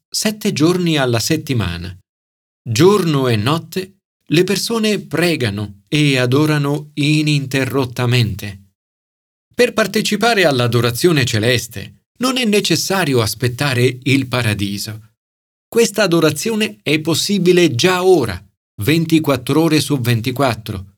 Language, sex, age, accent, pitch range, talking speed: Italian, male, 40-59, native, 110-175 Hz, 95 wpm